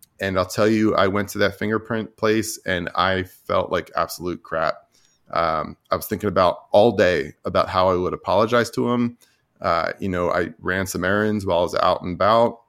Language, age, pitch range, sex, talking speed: English, 20-39, 90-110 Hz, male, 205 wpm